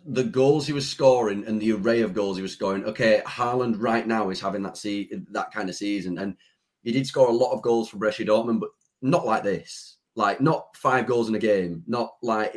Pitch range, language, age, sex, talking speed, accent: 110-135 Hz, English, 30-49, male, 235 wpm, British